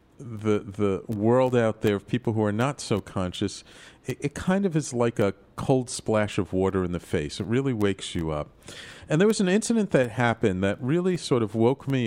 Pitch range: 95-130 Hz